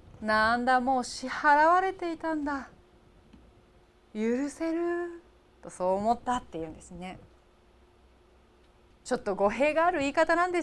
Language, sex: Japanese, female